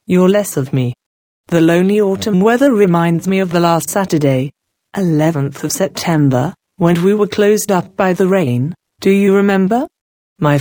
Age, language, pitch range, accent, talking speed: 40-59, English, 155-200 Hz, British, 165 wpm